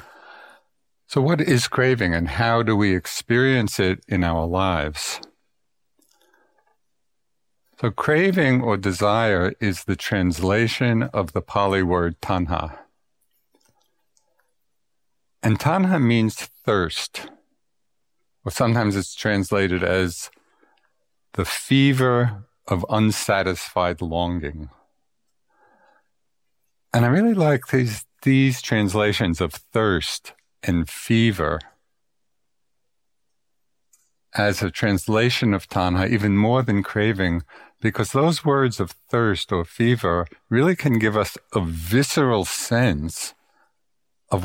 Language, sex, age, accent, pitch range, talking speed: English, male, 50-69, American, 90-120 Hz, 100 wpm